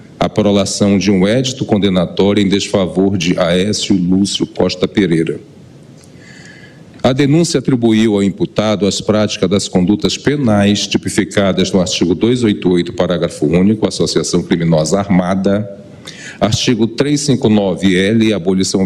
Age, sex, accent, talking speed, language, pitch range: 40-59, male, Brazilian, 115 wpm, Portuguese, 95-115 Hz